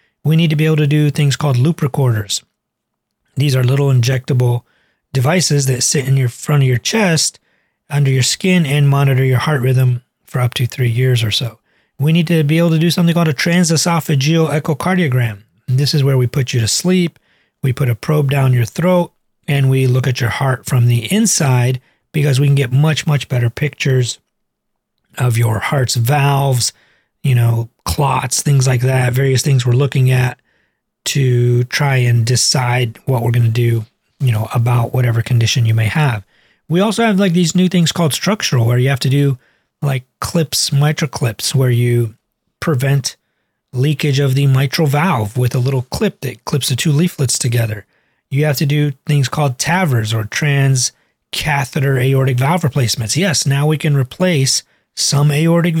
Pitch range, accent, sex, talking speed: 125-150 Hz, American, male, 185 wpm